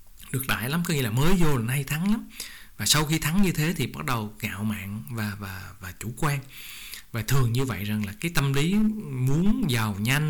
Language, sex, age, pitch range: Vietnamese, male, 20-39, 115-165 Hz